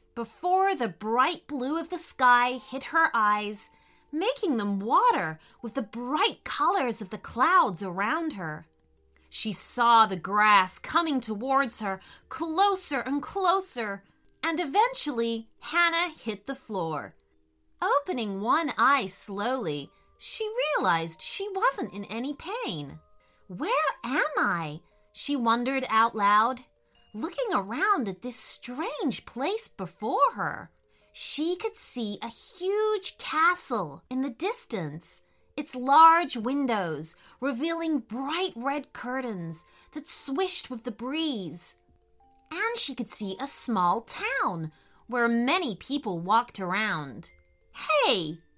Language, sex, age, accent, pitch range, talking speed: English, female, 30-49, American, 200-325 Hz, 120 wpm